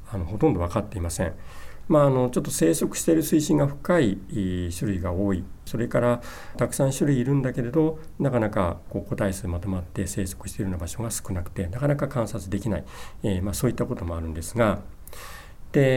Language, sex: Japanese, male